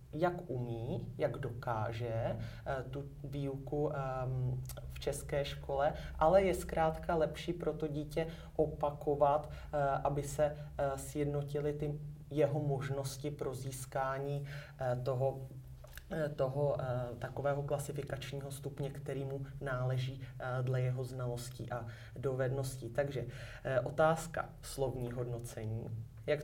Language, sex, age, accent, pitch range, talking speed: Czech, male, 30-49, native, 130-145 Hz, 95 wpm